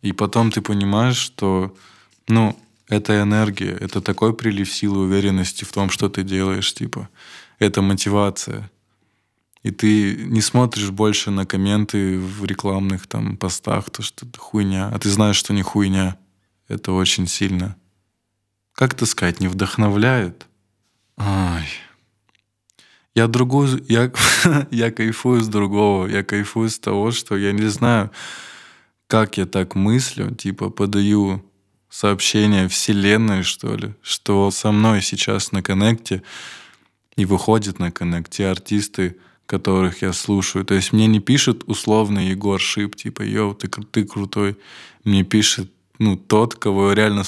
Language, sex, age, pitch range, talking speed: Russian, male, 20-39, 95-110 Hz, 140 wpm